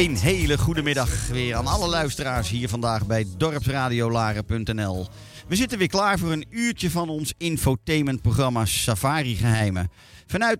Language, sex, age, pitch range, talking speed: Dutch, male, 40-59, 105-140 Hz, 135 wpm